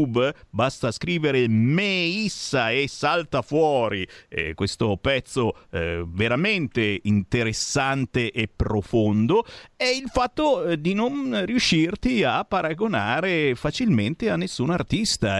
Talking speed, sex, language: 110 wpm, male, Italian